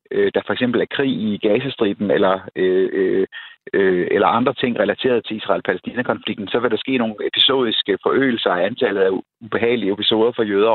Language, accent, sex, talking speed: Danish, native, male, 165 wpm